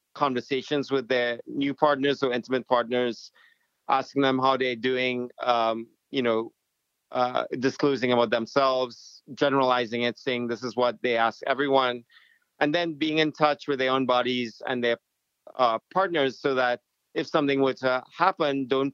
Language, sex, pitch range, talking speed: English, male, 120-140 Hz, 160 wpm